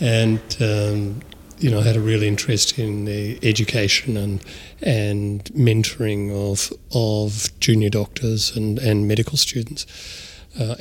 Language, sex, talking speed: English, male, 135 wpm